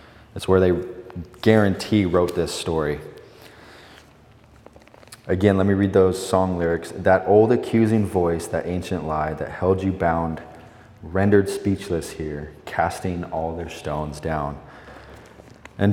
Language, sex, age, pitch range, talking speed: English, male, 20-39, 90-115 Hz, 130 wpm